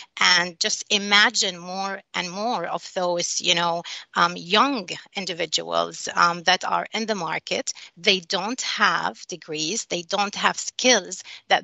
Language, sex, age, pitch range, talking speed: English, female, 30-49, 180-225 Hz, 155 wpm